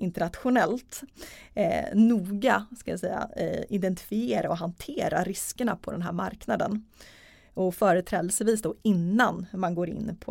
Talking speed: 120 wpm